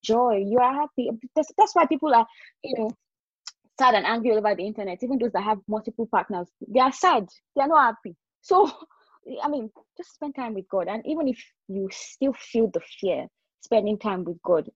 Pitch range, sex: 190-250 Hz, female